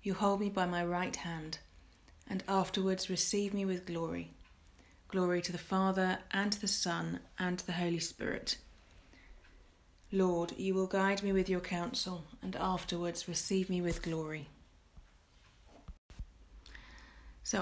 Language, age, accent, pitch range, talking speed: English, 30-49, British, 165-195 Hz, 140 wpm